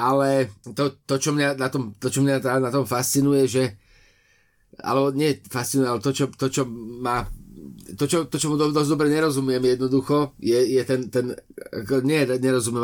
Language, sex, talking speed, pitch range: Slovak, male, 180 wpm, 115-140 Hz